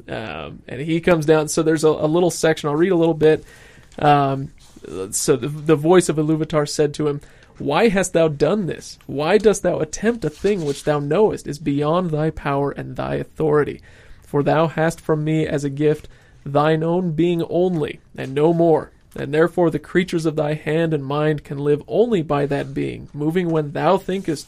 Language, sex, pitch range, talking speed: English, male, 145-170 Hz, 200 wpm